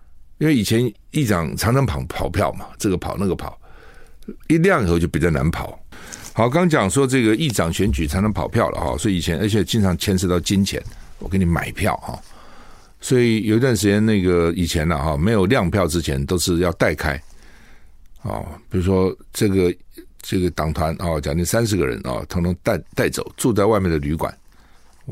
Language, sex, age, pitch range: Chinese, male, 60-79, 80-105 Hz